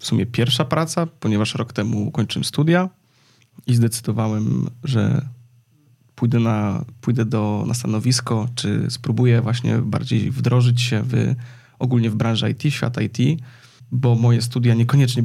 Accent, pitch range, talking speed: native, 115-135 Hz, 140 wpm